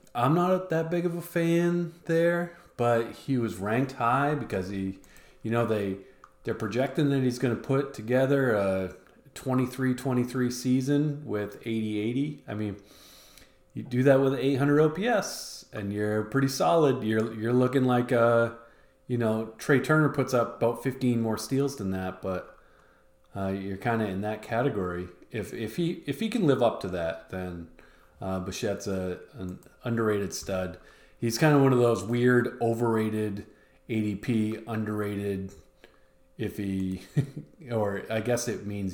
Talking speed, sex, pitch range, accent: 155 wpm, male, 100-130 Hz, American